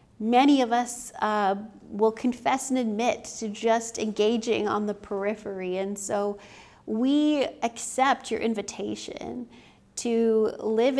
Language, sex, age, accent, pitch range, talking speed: English, female, 40-59, American, 205-235 Hz, 120 wpm